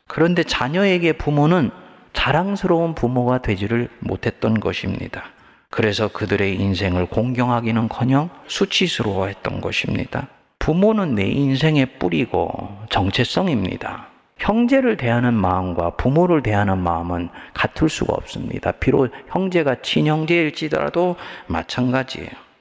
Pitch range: 100-145 Hz